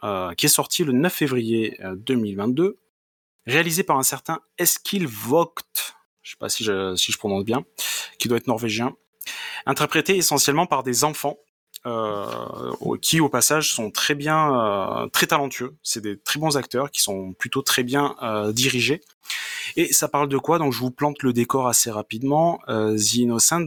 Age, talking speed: 30-49, 175 wpm